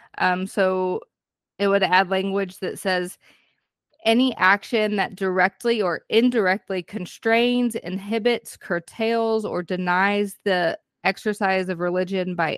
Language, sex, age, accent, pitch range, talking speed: English, female, 20-39, American, 185-225 Hz, 115 wpm